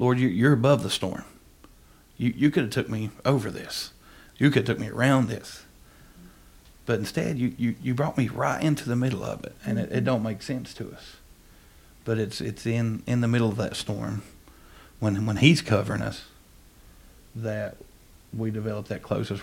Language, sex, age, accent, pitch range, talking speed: English, male, 50-69, American, 100-115 Hz, 190 wpm